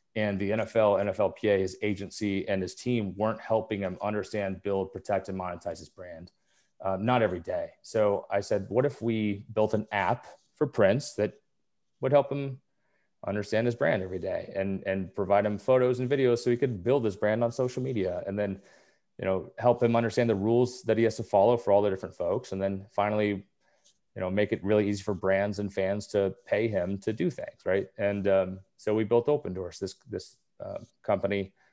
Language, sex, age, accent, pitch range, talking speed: English, male, 30-49, American, 95-110 Hz, 205 wpm